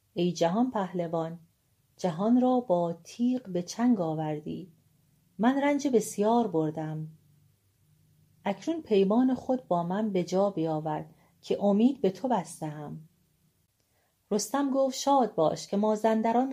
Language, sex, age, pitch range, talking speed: Persian, female, 40-59, 165-220 Hz, 120 wpm